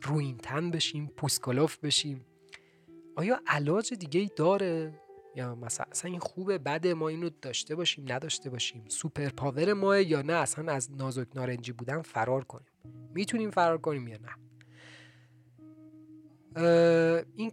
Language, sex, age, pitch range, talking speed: Persian, male, 30-49, 125-175 Hz, 130 wpm